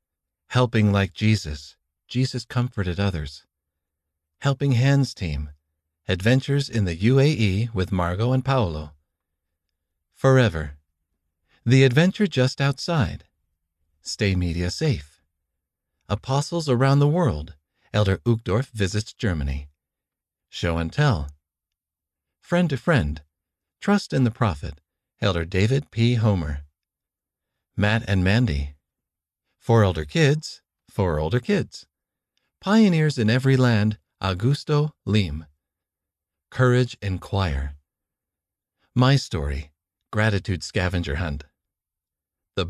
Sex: male